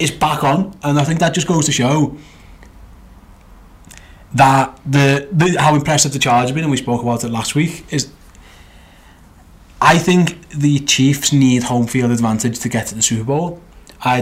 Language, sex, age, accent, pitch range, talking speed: English, male, 20-39, British, 120-150 Hz, 180 wpm